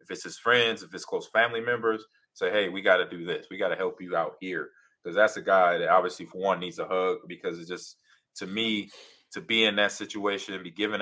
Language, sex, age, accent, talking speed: English, male, 20-39, American, 255 wpm